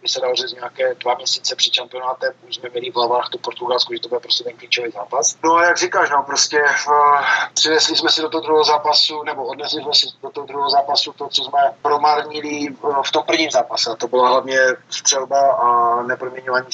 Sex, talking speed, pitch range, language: male, 215 wpm, 125-155 Hz, Slovak